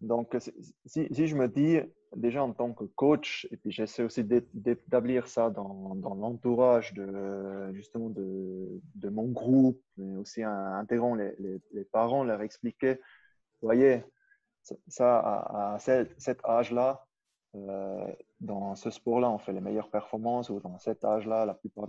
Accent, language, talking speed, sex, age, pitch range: French, French, 150 wpm, male, 20-39, 105-130 Hz